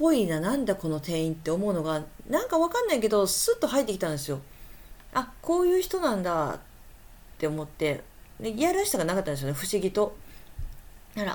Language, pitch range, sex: Japanese, 155-250 Hz, female